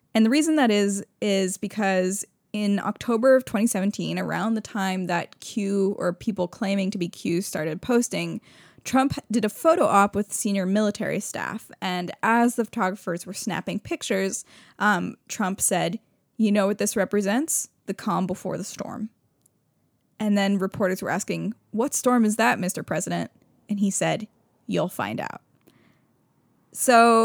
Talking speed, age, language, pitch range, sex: 155 wpm, 10-29, English, 185-220 Hz, female